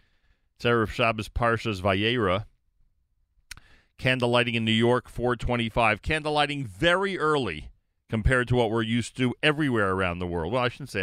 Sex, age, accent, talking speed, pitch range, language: male, 40-59, American, 150 wpm, 85-120 Hz, English